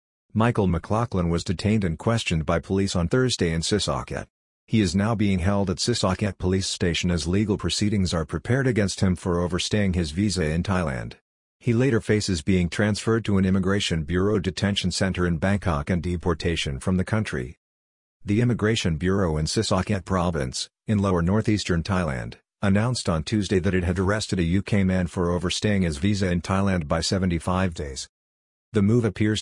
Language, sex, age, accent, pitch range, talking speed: English, male, 50-69, American, 85-105 Hz, 170 wpm